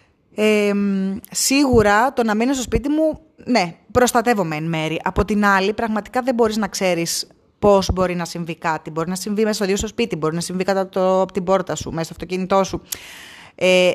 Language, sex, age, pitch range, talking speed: Greek, female, 20-39, 175-210 Hz, 195 wpm